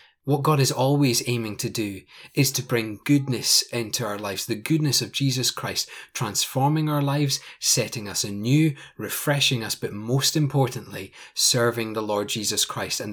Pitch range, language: 105-135 Hz, English